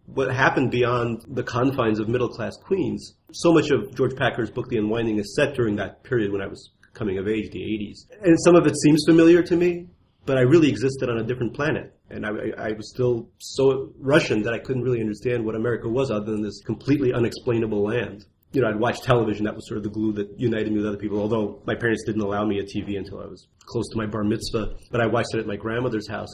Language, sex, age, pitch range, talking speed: English, male, 30-49, 105-130 Hz, 245 wpm